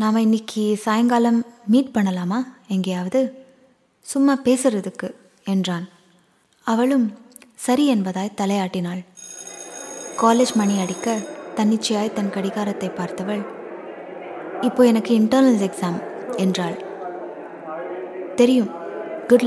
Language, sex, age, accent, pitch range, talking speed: Tamil, female, 20-39, native, 195-235 Hz, 85 wpm